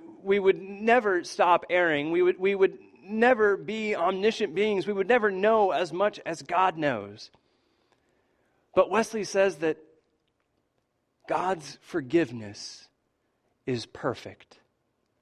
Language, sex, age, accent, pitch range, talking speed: English, male, 40-59, American, 135-205 Hz, 120 wpm